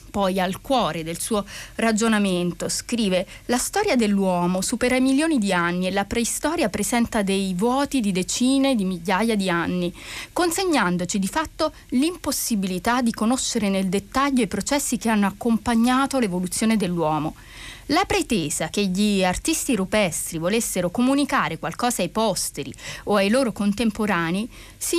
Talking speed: 140 wpm